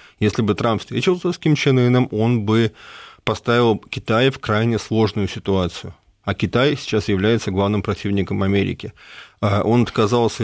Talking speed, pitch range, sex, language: 140 wpm, 100-120 Hz, male, Russian